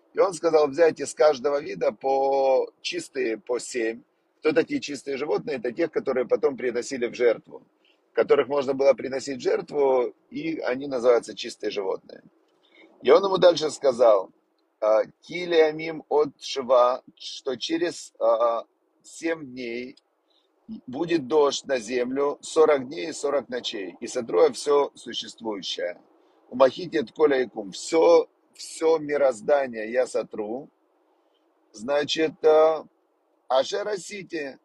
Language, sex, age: Russian, male, 40-59